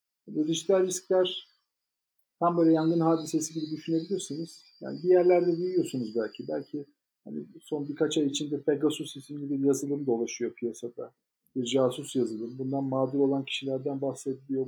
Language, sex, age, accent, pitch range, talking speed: Turkish, male, 50-69, native, 130-165 Hz, 140 wpm